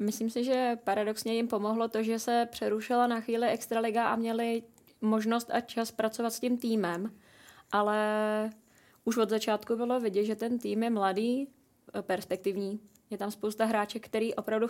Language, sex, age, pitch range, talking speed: Czech, female, 20-39, 205-230 Hz, 165 wpm